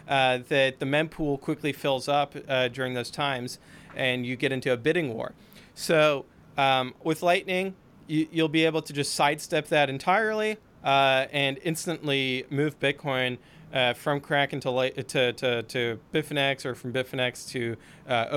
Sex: male